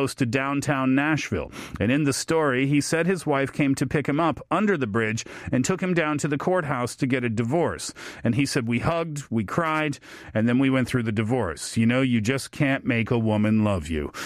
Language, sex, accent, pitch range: Korean, male, American, 125-170 Hz